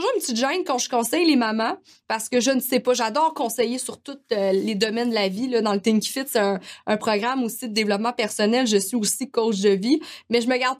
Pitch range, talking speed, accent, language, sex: 220-275 Hz, 255 wpm, Canadian, French, female